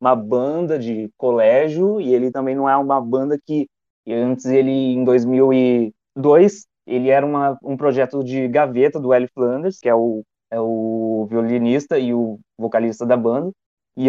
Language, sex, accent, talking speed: Portuguese, male, Brazilian, 160 wpm